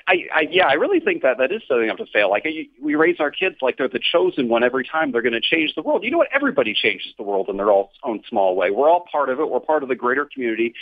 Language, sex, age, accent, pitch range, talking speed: English, male, 40-59, American, 115-170 Hz, 300 wpm